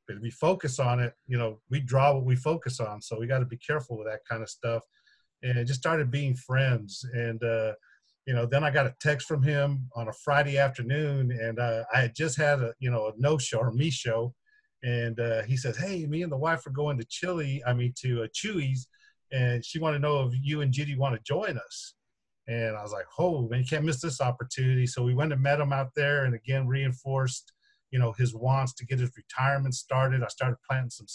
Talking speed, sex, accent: 245 wpm, male, American